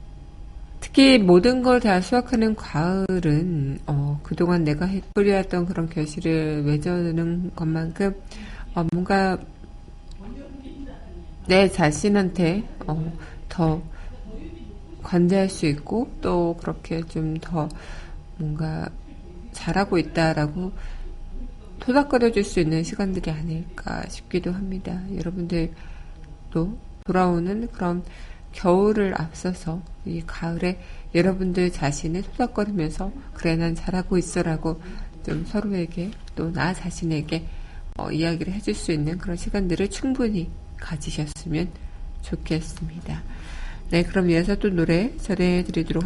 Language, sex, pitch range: Korean, female, 155-190 Hz